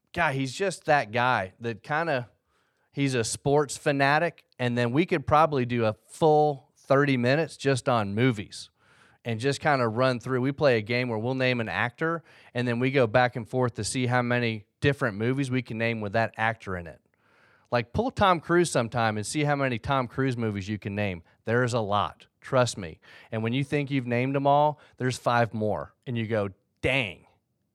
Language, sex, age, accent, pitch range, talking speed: English, male, 30-49, American, 115-145 Hz, 210 wpm